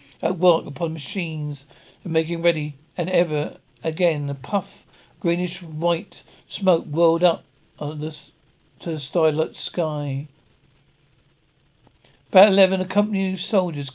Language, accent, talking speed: English, British, 125 wpm